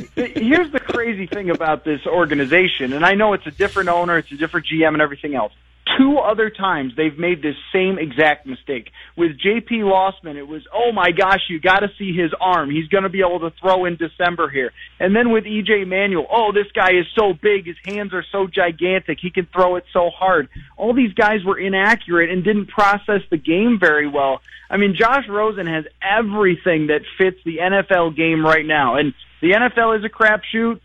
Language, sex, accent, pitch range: English, male, American, 160-195 Hz